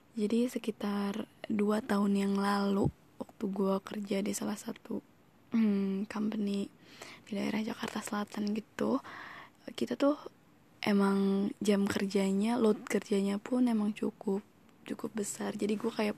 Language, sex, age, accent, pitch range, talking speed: Indonesian, female, 20-39, native, 200-225 Hz, 125 wpm